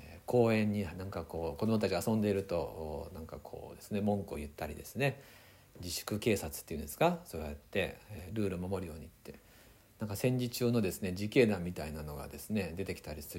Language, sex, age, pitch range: Japanese, male, 60-79, 95-145 Hz